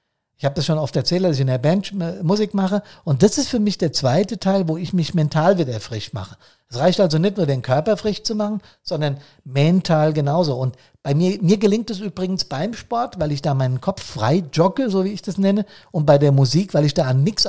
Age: 50-69